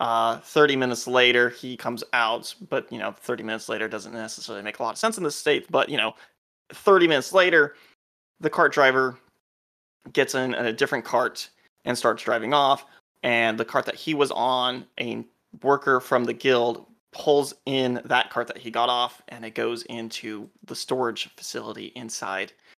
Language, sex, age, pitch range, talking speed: English, male, 20-39, 115-150 Hz, 180 wpm